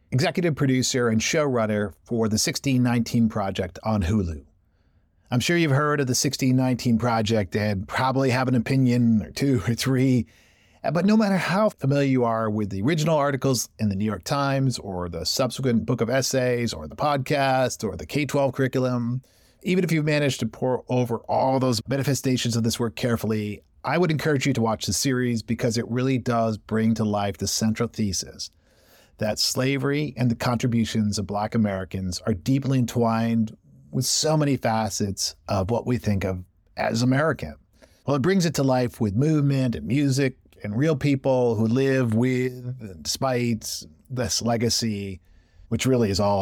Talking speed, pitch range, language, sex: 175 wpm, 110-135 Hz, English, male